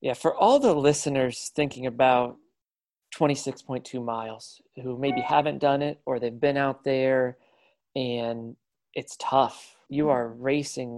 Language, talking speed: English, 135 wpm